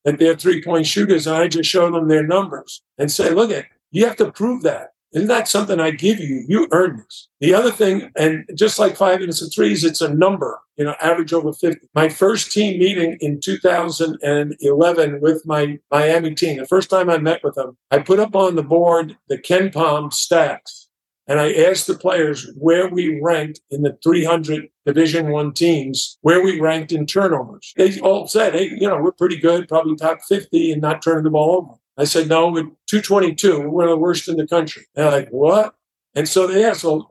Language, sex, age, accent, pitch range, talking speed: English, male, 50-69, American, 155-185 Hz, 220 wpm